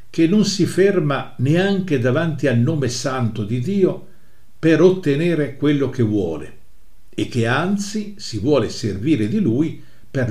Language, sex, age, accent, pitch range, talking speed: Italian, male, 50-69, native, 115-160 Hz, 145 wpm